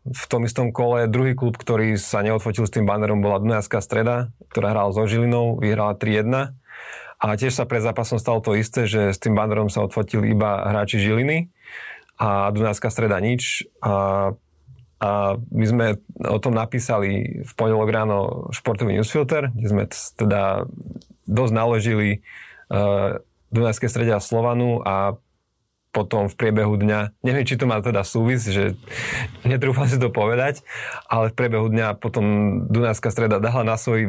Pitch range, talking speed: 105-120 Hz, 155 wpm